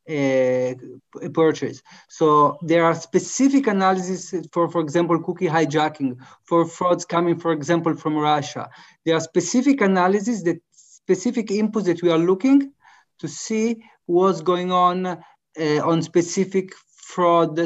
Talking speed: 135 wpm